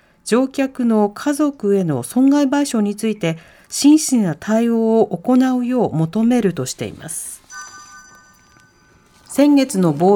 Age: 40-59